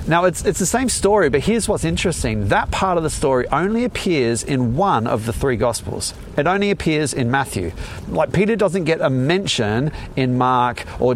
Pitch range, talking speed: 95-155 Hz, 200 wpm